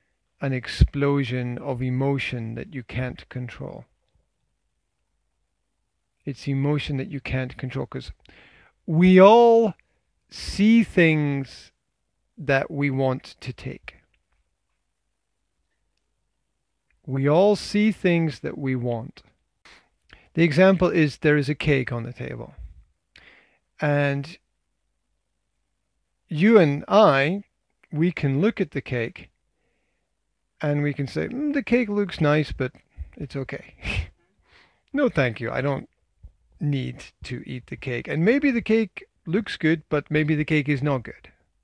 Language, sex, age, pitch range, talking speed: English, male, 40-59, 120-165 Hz, 125 wpm